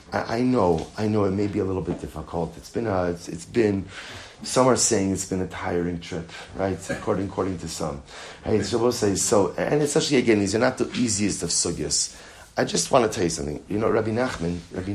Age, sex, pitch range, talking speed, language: 30-49, male, 85-110 Hz, 235 wpm, English